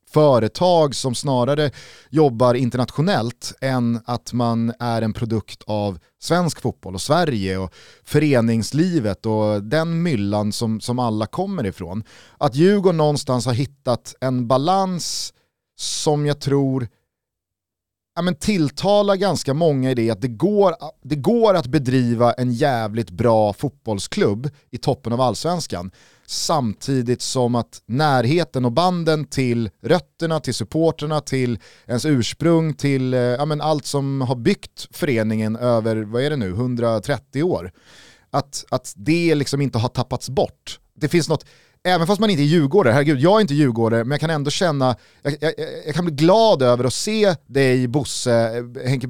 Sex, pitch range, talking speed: male, 115-150 Hz, 155 wpm